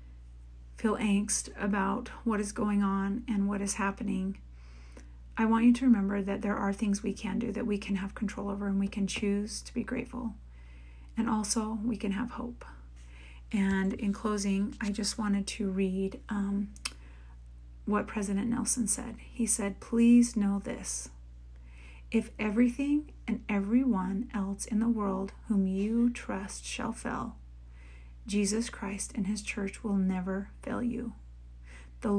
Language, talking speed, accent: English, 155 wpm, American